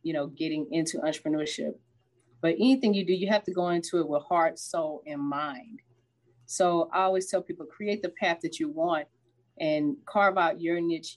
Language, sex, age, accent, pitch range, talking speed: English, female, 30-49, American, 145-180 Hz, 195 wpm